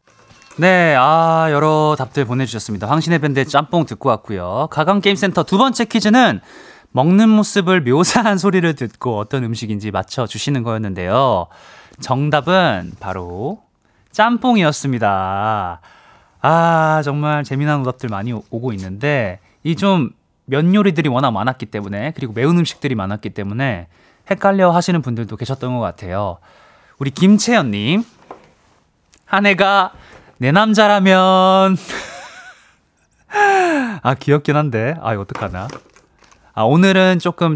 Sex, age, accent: male, 20-39, native